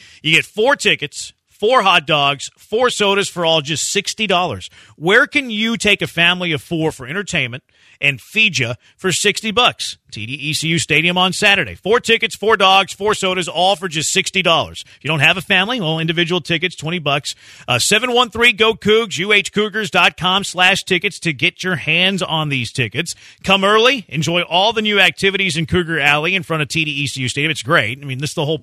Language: English